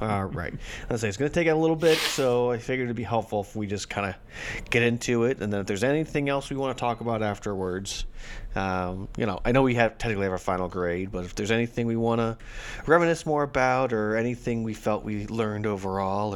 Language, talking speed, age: English, 240 wpm, 30-49